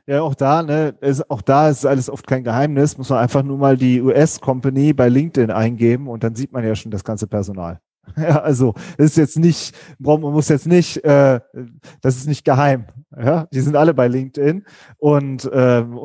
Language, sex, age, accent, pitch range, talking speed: German, male, 30-49, German, 130-160 Hz, 205 wpm